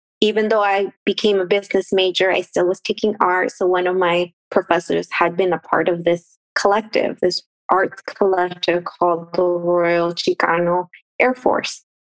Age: 20-39